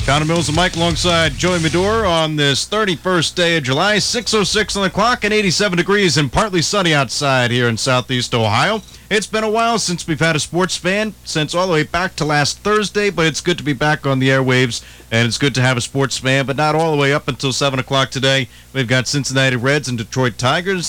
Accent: American